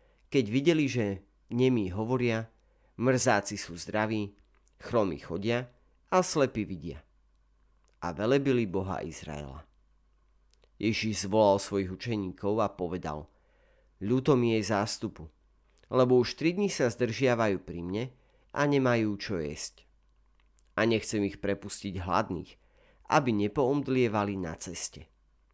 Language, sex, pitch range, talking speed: Slovak, male, 85-120 Hz, 115 wpm